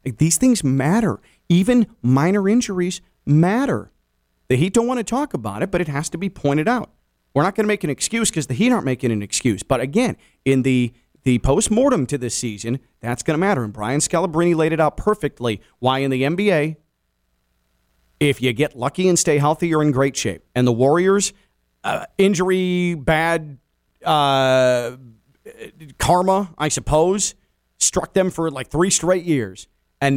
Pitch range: 130-175 Hz